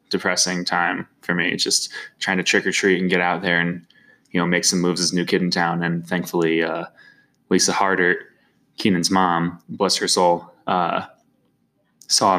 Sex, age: male, 20-39